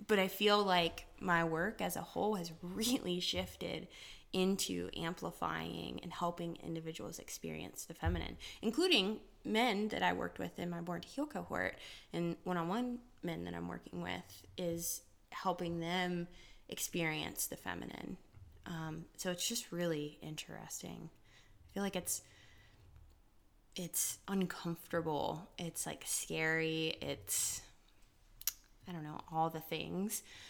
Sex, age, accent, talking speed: female, 20-39, American, 130 wpm